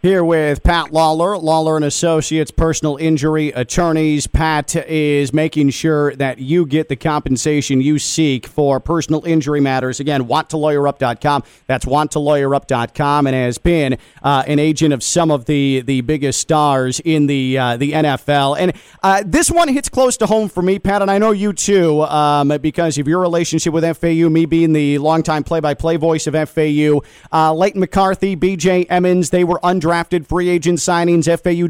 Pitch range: 150-180 Hz